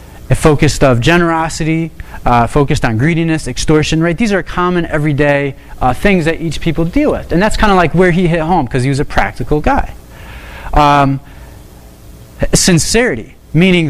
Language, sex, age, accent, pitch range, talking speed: English, male, 30-49, American, 115-155 Hz, 165 wpm